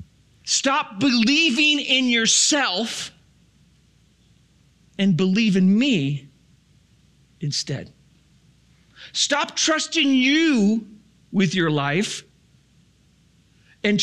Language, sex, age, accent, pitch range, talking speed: English, male, 40-59, American, 155-230 Hz, 70 wpm